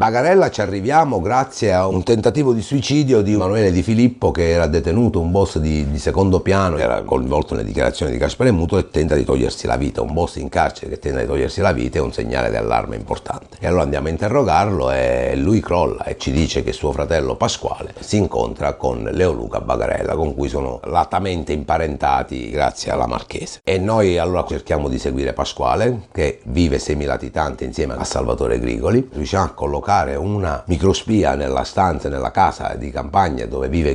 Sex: male